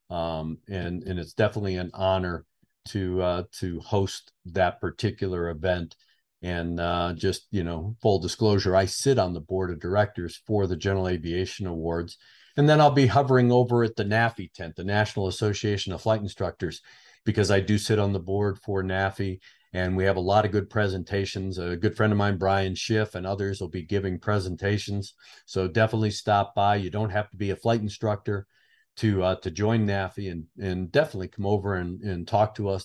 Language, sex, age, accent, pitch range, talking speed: English, male, 50-69, American, 95-110 Hz, 195 wpm